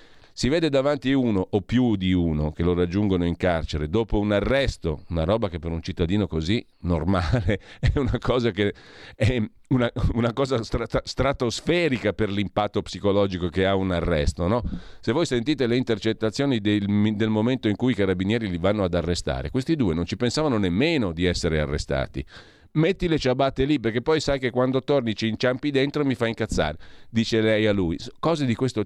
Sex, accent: male, native